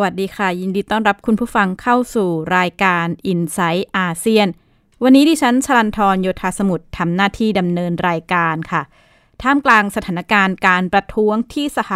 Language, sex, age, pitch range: Thai, female, 20-39, 180-230 Hz